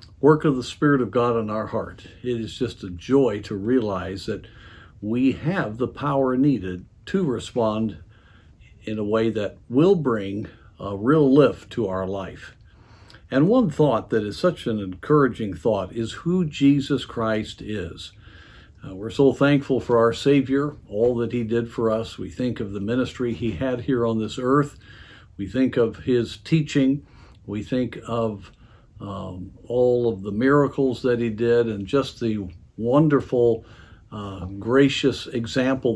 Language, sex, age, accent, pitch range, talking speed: English, male, 50-69, American, 100-125 Hz, 160 wpm